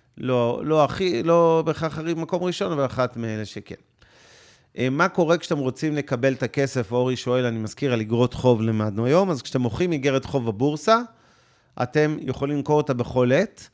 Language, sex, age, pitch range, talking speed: Hebrew, male, 40-59, 120-150 Hz, 170 wpm